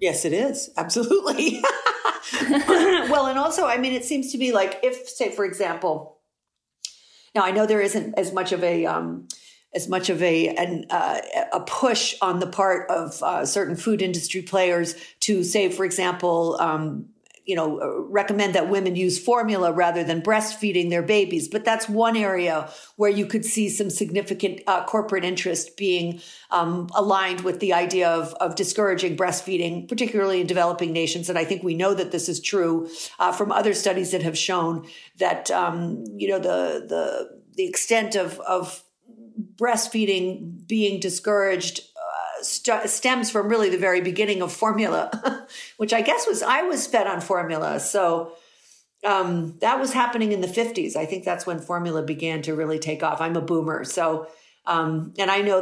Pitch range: 175-215 Hz